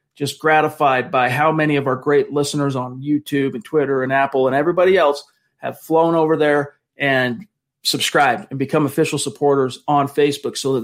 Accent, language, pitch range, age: American, English, 135-155 Hz, 40-59